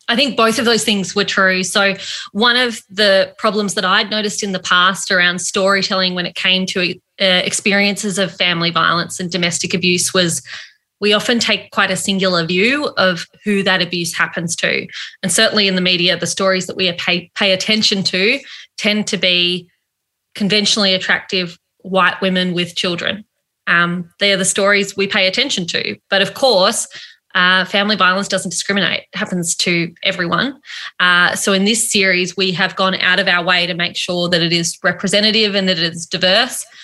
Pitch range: 180-205 Hz